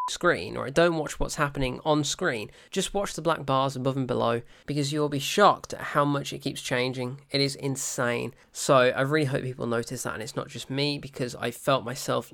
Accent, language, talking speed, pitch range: British, English, 225 wpm, 140-190 Hz